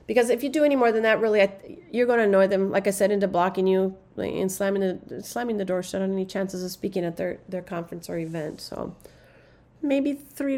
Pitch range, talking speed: 195-245 Hz, 235 wpm